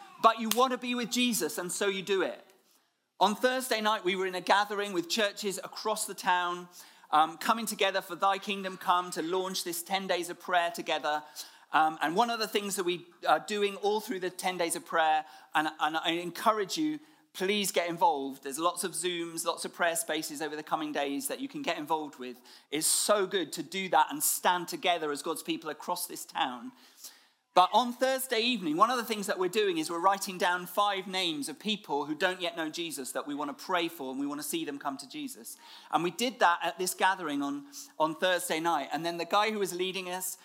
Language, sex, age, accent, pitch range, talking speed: English, male, 40-59, British, 160-215 Hz, 230 wpm